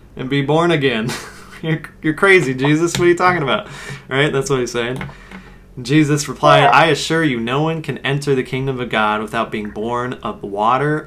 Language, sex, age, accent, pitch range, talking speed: English, male, 30-49, American, 115-155 Hz, 195 wpm